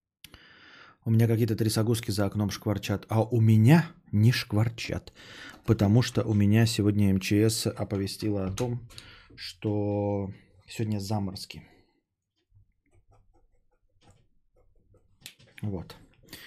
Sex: male